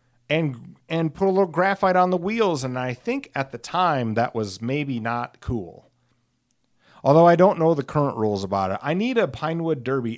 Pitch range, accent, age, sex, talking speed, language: 105-130 Hz, American, 40-59, male, 200 wpm, English